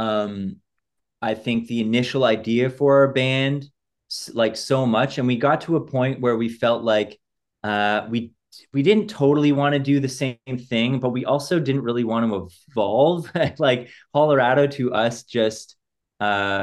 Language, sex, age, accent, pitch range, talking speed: English, male, 20-39, American, 105-130 Hz, 170 wpm